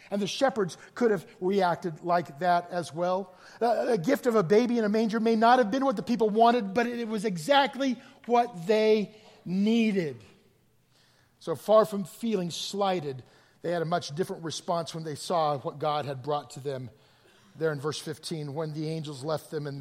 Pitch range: 150-220 Hz